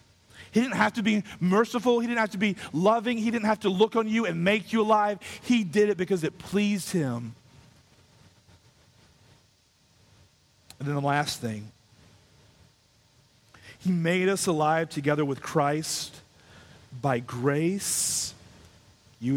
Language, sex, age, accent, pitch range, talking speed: English, male, 40-59, American, 120-190 Hz, 140 wpm